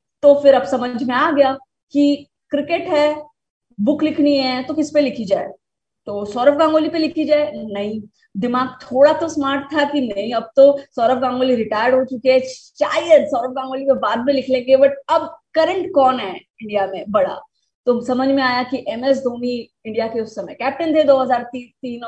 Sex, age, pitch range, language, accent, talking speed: female, 20-39, 230-280 Hz, Hindi, native, 190 wpm